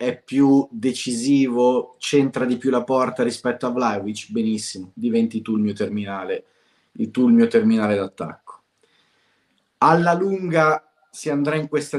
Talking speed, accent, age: 140 wpm, native, 30-49